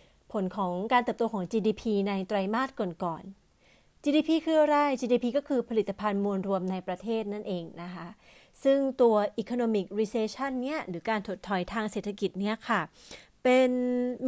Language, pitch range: Thai, 195-250 Hz